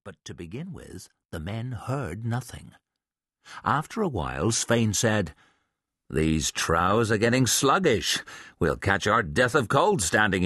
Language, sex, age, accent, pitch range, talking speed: English, male, 50-69, British, 85-130 Hz, 145 wpm